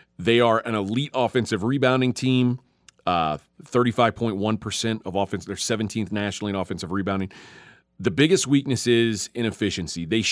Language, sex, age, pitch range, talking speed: English, male, 30-49, 105-125 Hz, 135 wpm